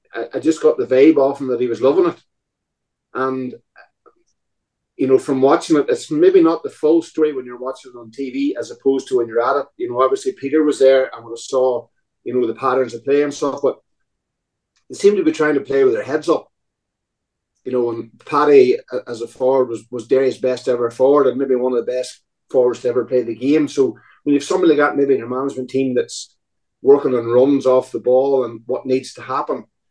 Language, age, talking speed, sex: English, 30-49, 235 wpm, male